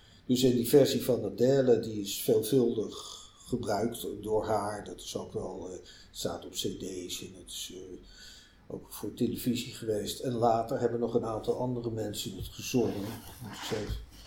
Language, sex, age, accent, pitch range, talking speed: Dutch, male, 50-69, Dutch, 105-120 Hz, 170 wpm